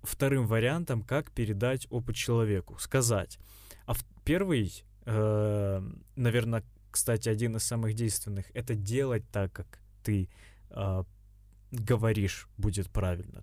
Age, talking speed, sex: 20-39, 110 wpm, male